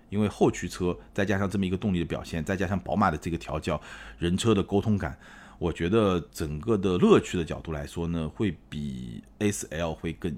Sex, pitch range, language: male, 80-105 Hz, Chinese